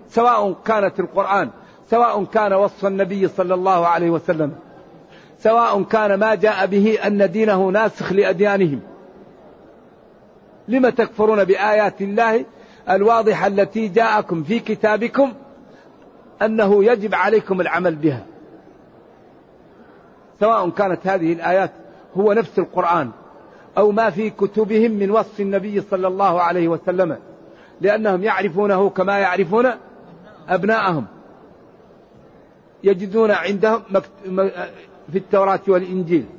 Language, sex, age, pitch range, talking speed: Arabic, male, 50-69, 185-215 Hz, 100 wpm